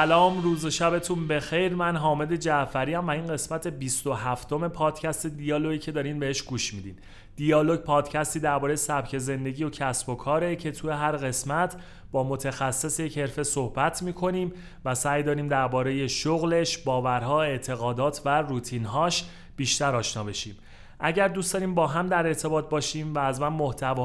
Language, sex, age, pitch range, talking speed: Persian, male, 30-49, 130-160 Hz, 155 wpm